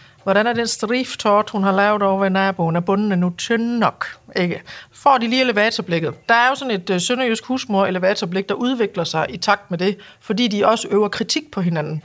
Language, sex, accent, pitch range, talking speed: Danish, female, native, 175-230 Hz, 205 wpm